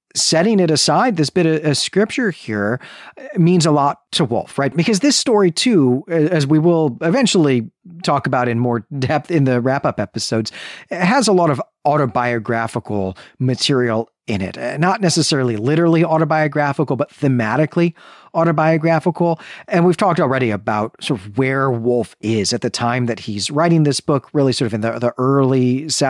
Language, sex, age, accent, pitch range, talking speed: English, male, 40-59, American, 120-165 Hz, 165 wpm